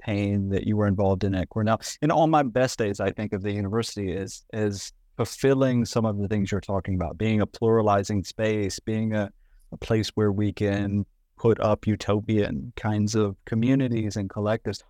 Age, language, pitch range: 30-49, English, 100-115 Hz